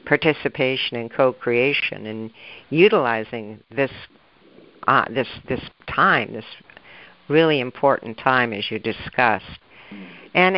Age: 60-79